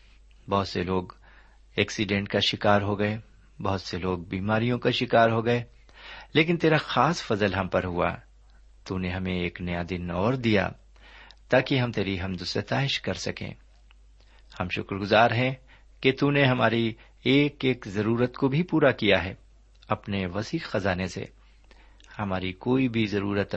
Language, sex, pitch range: Urdu, male, 95-125 Hz